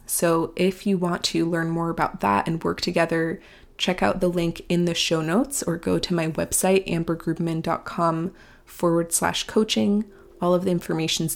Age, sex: 20-39, female